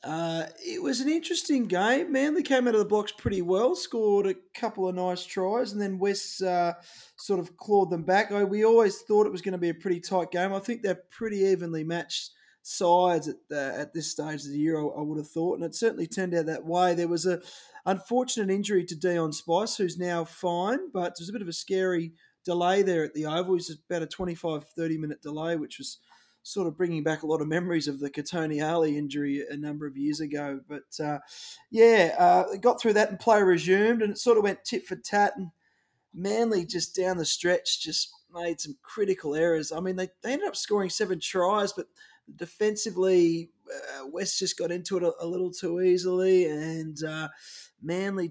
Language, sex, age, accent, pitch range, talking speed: English, male, 20-39, Australian, 165-200 Hz, 215 wpm